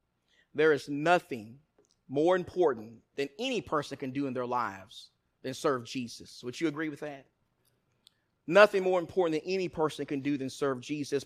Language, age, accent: English, 30-49, American